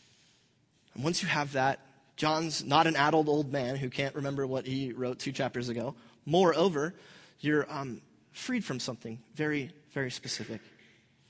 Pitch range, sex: 120-155 Hz, male